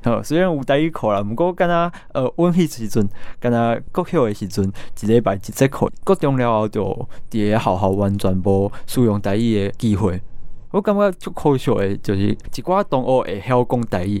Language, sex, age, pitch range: Chinese, male, 20-39, 105-130 Hz